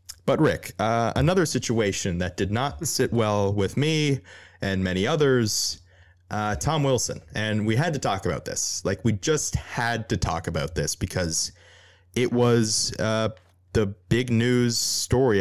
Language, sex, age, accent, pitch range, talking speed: English, male, 20-39, American, 95-120 Hz, 160 wpm